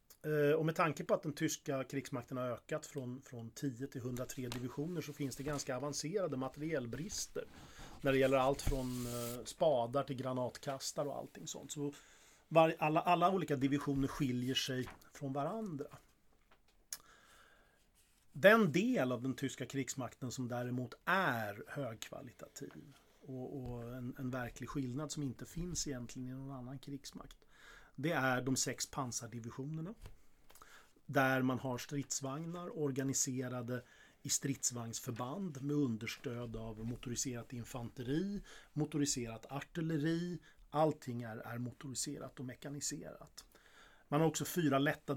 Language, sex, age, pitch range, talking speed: Swedish, male, 30-49, 125-145 Hz, 130 wpm